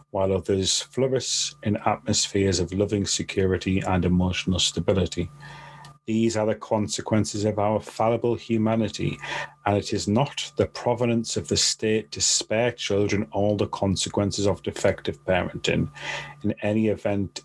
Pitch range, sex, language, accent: 100-130 Hz, male, English, British